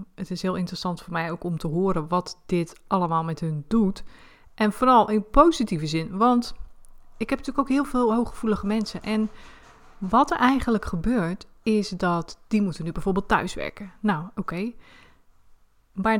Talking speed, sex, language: 175 wpm, female, Dutch